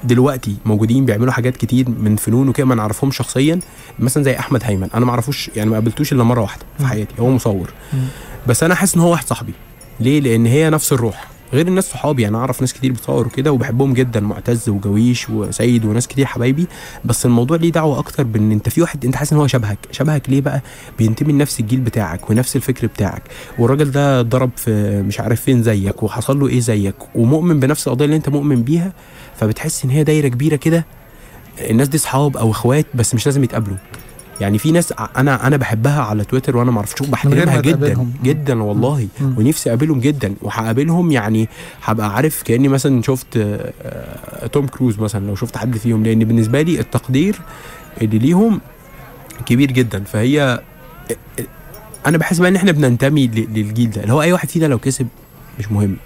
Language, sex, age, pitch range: Chinese, male, 20-39, 115-145 Hz